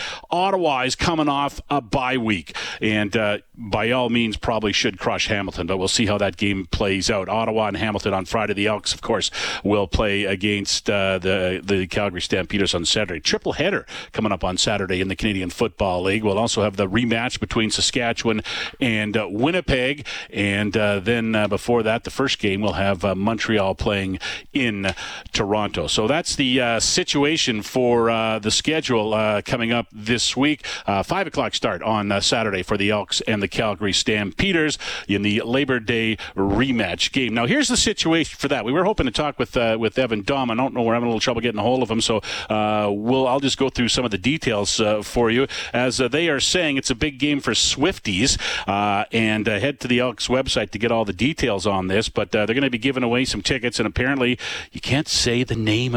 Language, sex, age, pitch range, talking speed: English, male, 40-59, 100-125 Hz, 215 wpm